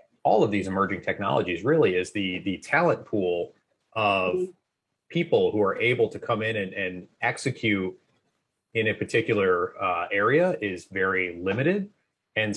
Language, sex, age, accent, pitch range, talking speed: English, male, 30-49, American, 95-115 Hz, 150 wpm